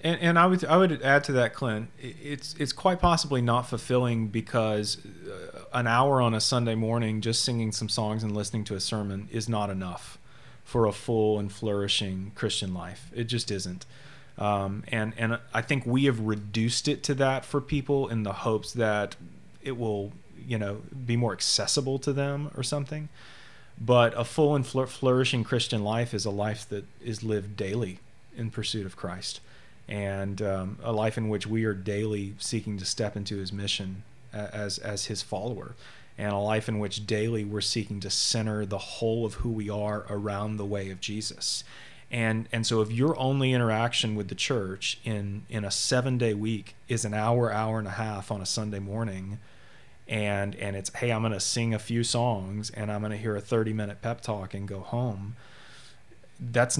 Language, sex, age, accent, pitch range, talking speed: English, male, 30-49, American, 105-120 Hz, 190 wpm